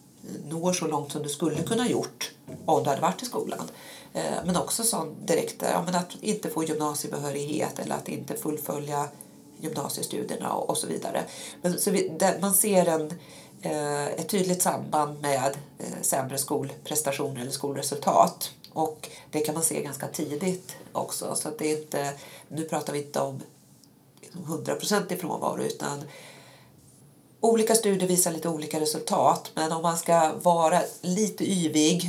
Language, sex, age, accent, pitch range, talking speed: English, female, 40-59, Swedish, 150-175 Hz, 150 wpm